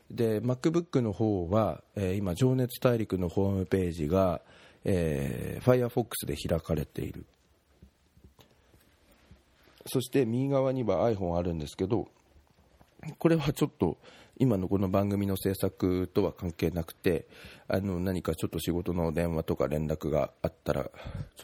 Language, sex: Japanese, male